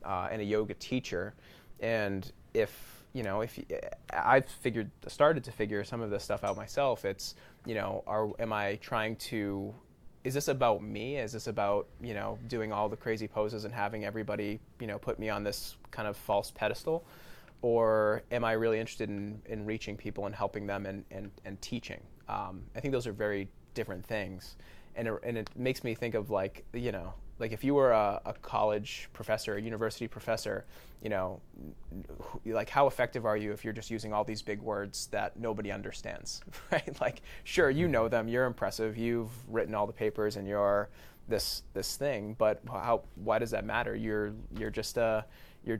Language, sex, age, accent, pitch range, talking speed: English, male, 20-39, American, 105-115 Hz, 200 wpm